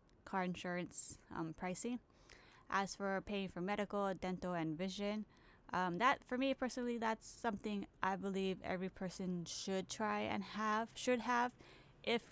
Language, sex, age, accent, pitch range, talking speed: English, female, 20-39, American, 175-205 Hz, 145 wpm